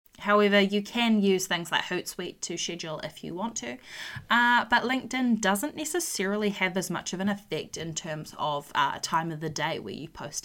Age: 20-39